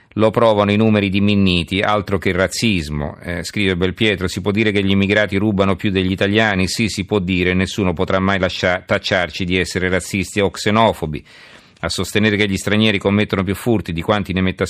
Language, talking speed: Italian, 190 wpm